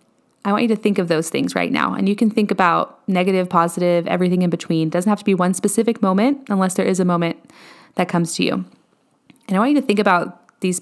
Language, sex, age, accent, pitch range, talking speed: English, female, 20-39, American, 175-210 Hz, 250 wpm